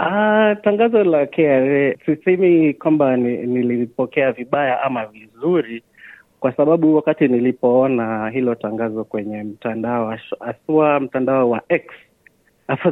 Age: 30-49